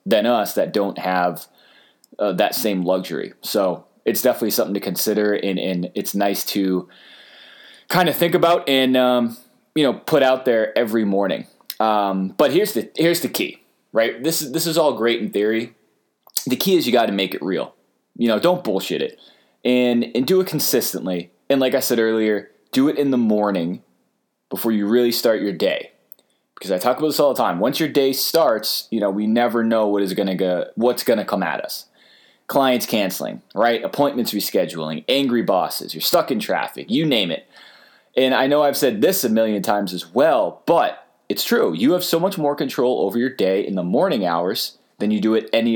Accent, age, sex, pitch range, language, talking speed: American, 20-39, male, 105-130 Hz, English, 205 wpm